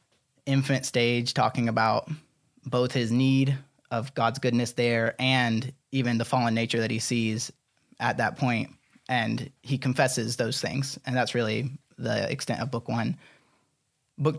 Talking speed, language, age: 150 wpm, English, 20-39